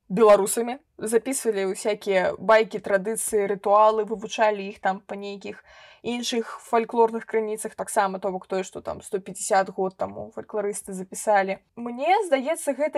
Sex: female